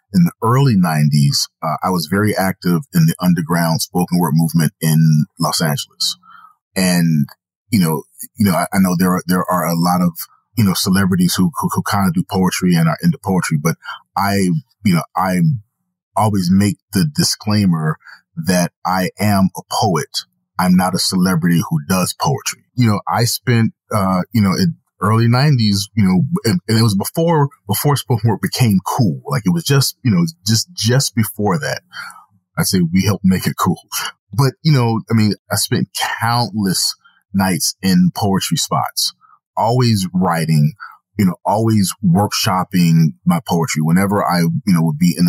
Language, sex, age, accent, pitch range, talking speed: English, male, 30-49, American, 90-120 Hz, 180 wpm